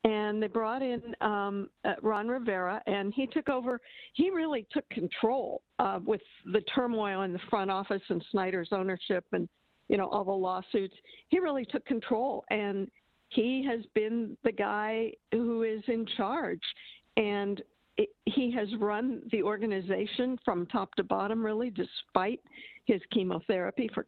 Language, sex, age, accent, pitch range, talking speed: English, female, 50-69, American, 200-250 Hz, 155 wpm